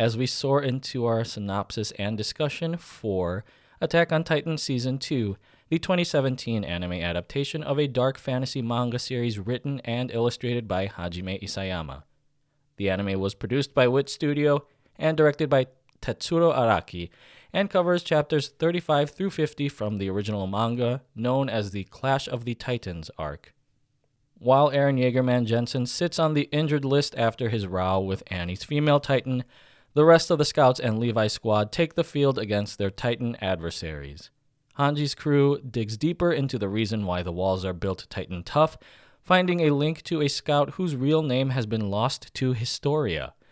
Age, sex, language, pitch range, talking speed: 20-39, male, English, 110-145 Hz, 165 wpm